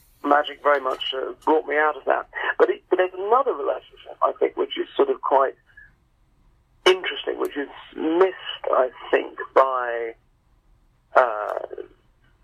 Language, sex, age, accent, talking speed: English, male, 40-59, British, 145 wpm